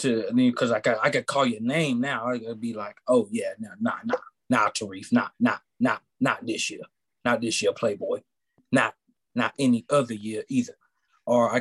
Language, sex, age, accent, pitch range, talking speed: English, male, 20-39, American, 110-130 Hz, 210 wpm